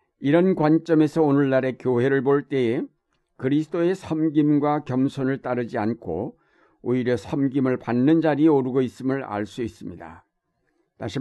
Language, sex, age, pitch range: Korean, male, 60-79, 115-145 Hz